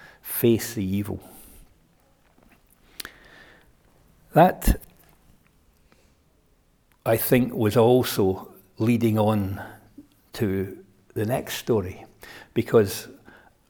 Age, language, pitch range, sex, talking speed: 60-79, English, 100-120 Hz, male, 65 wpm